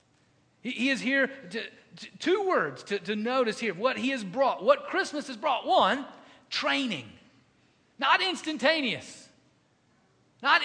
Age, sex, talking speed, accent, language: 40-59, male, 125 wpm, American, English